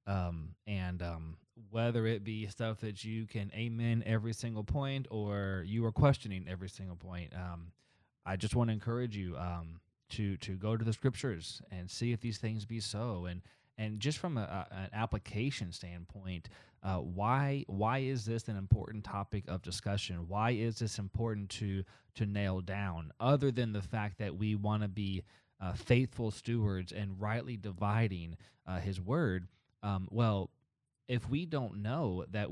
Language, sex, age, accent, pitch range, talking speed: English, male, 20-39, American, 95-120 Hz, 175 wpm